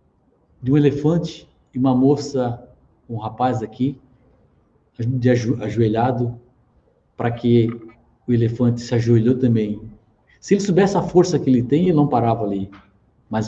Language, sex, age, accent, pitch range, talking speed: Portuguese, male, 50-69, Brazilian, 105-145 Hz, 135 wpm